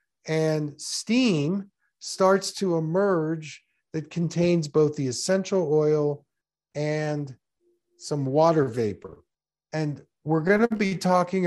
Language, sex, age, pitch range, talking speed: English, male, 50-69, 145-185 Hz, 110 wpm